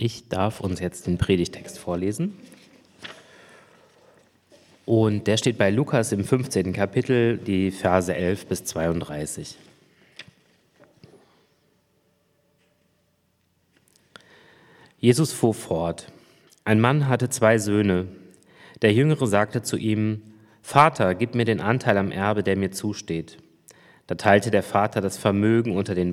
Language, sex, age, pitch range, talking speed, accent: German, male, 30-49, 95-115 Hz, 115 wpm, German